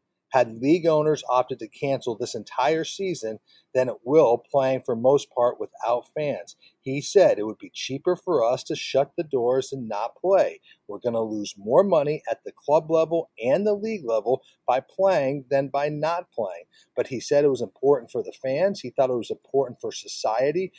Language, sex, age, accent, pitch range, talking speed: English, male, 40-59, American, 130-185 Hz, 200 wpm